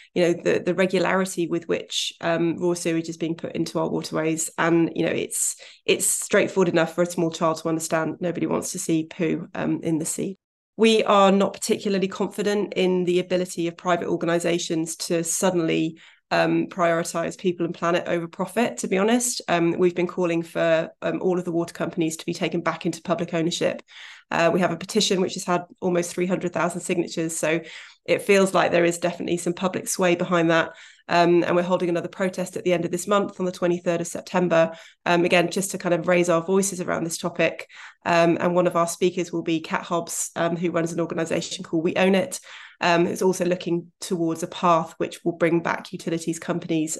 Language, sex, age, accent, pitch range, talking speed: English, female, 20-39, British, 170-180 Hz, 210 wpm